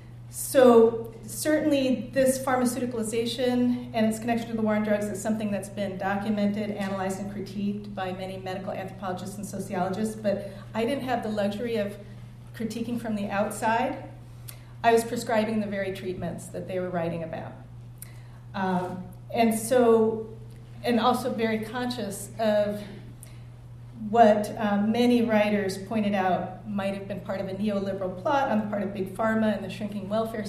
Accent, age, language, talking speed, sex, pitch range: American, 40-59, English, 155 wpm, female, 180-225 Hz